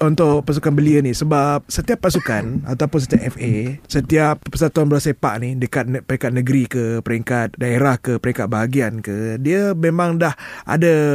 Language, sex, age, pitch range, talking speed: Malay, male, 20-39, 125-155 Hz, 150 wpm